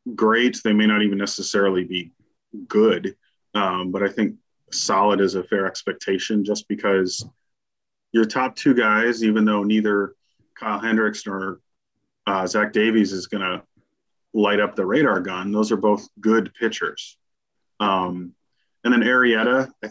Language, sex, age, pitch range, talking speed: English, male, 30-49, 100-120 Hz, 150 wpm